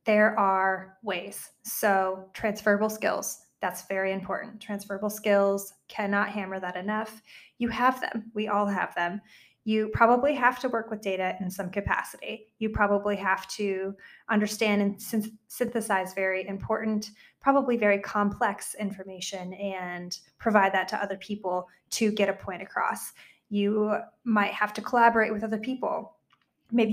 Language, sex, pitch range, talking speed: English, female, 190-220 Hz, 145 wpm